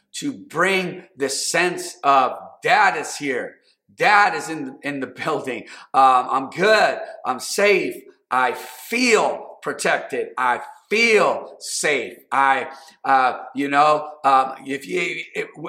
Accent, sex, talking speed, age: American, male, 130 wpm, 40-59